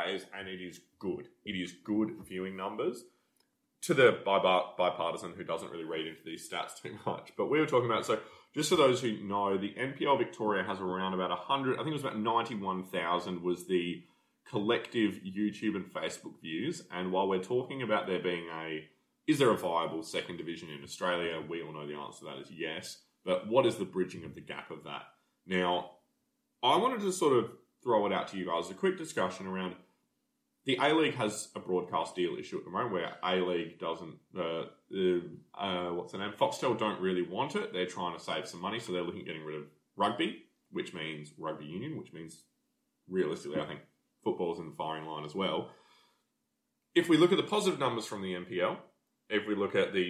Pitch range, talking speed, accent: 90-115 Hz, 205 wpm, Australian